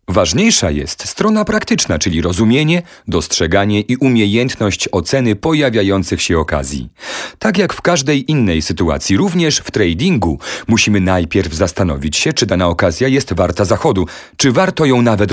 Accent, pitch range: native, 90-135 Hz